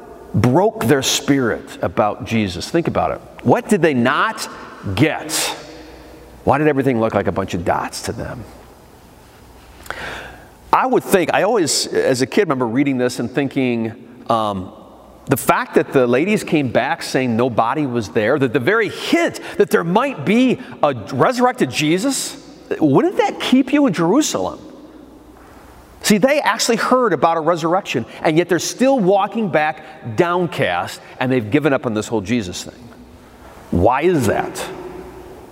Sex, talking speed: male, 155 wpm